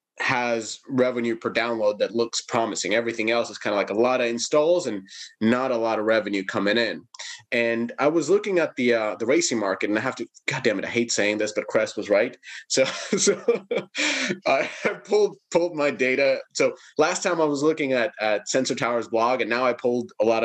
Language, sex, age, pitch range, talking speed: English, male, 30-49, 115-150 Hz, 215 wpm